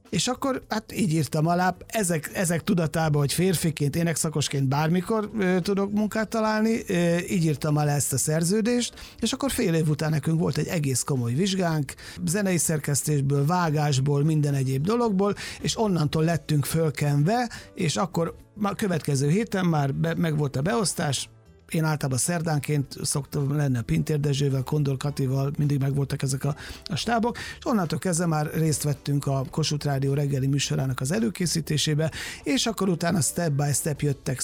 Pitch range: 140-175 Hz